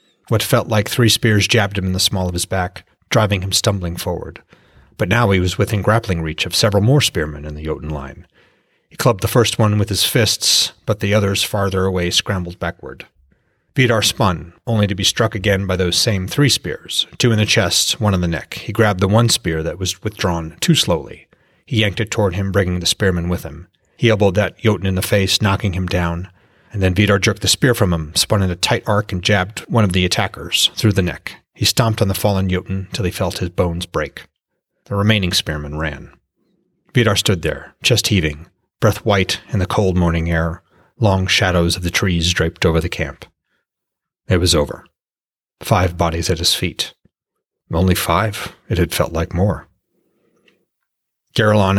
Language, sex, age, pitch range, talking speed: English, male, 30-49, 85-105 Hz, 200 wpm